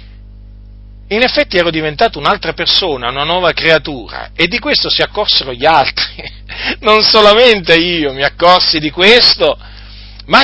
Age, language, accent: 40-59, Italian, native